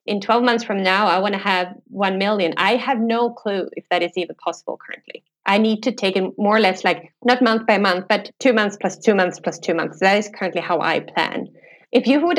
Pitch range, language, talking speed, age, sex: 175-225 Hz, English, 250 wpm, 20-39, female